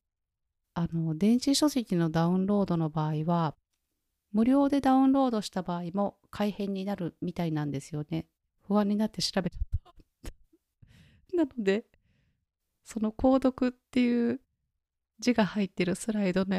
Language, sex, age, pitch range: Japanese, female, 30-49, 160-200 Hz